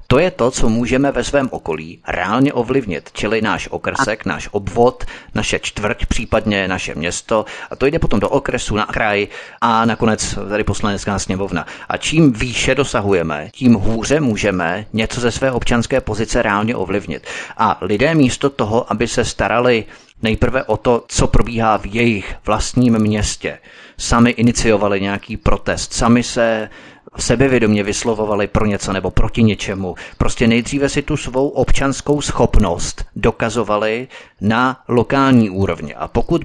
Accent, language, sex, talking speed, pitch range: native, Czech, male, 145 wpm, 105-130 Hz